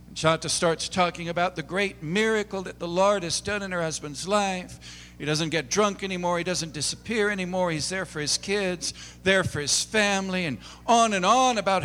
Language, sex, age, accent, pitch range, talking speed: English, male, 60-79, American, 135-195 Hz, 195 wpm